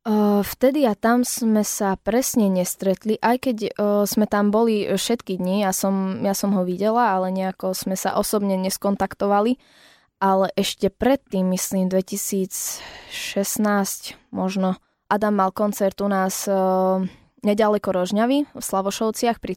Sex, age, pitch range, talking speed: female, 20-39, 190-225 Hz, 140 wpm